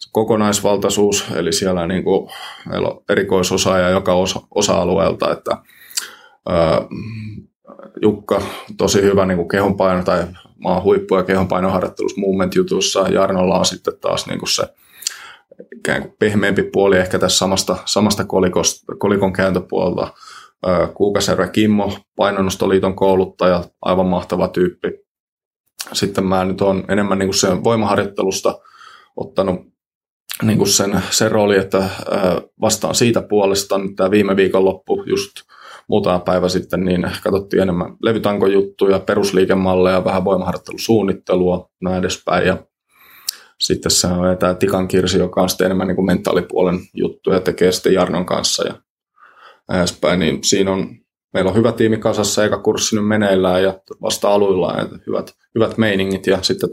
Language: Finnish